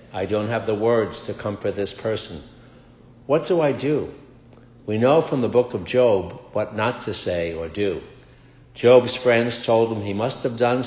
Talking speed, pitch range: 190 wpm, 100-125 Hz